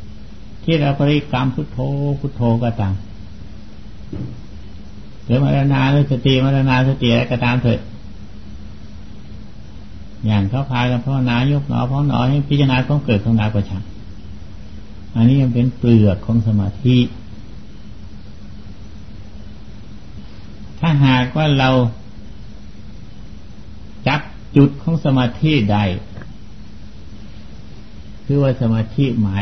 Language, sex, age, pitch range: Thai, male, 60-79, 105-135 Hz